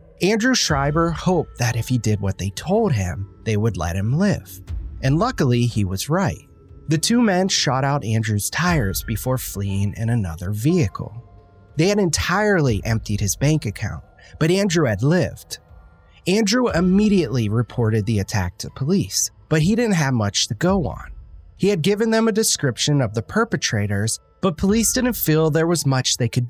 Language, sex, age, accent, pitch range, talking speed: English, male, 30-49, American, 105-170 Hz, 175 wpm